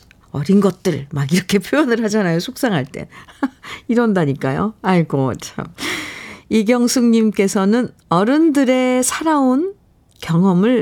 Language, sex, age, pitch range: Korean, female, 50-69, 165-230 Hz